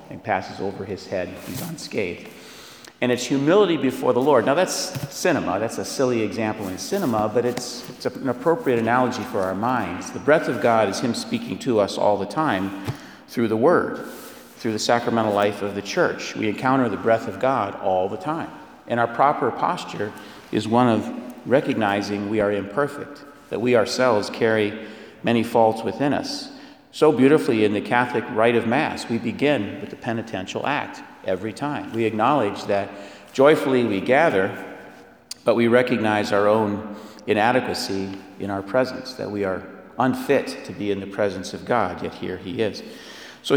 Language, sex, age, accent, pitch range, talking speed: English, male, 50-69, American, 100-125 Hz, 175 wpm